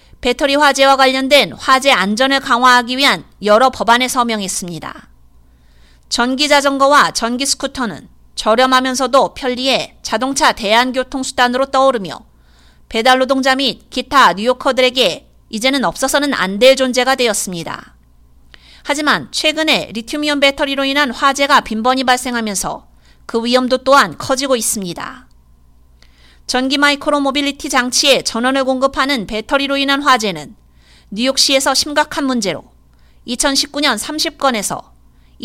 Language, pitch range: Korean, 200-275 Hz